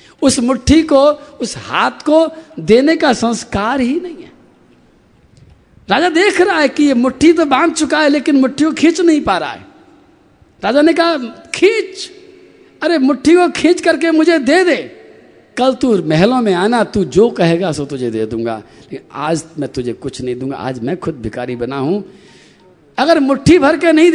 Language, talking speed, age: Hindi, 180 wpm, 50-69